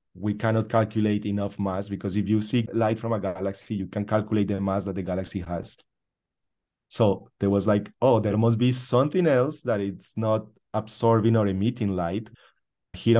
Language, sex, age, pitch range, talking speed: English, male, 30-49, 100-115 Hz, 180 wpm